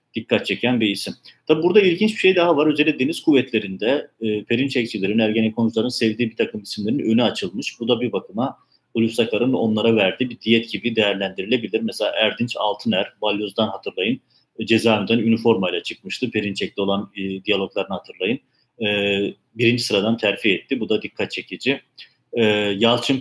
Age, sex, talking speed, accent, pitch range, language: 40-59, male, 155 wpm, native, 105-125 Hz, Turkish